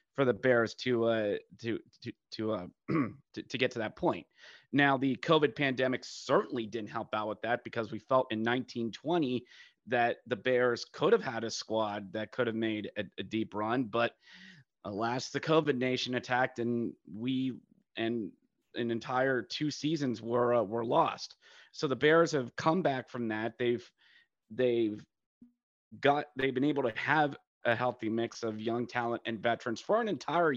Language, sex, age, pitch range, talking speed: English, male, 30-49, 115-135 Hz, 175 wpm